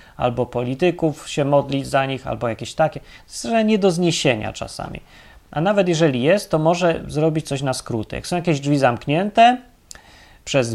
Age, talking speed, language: 30-49, 165 wpm, Polish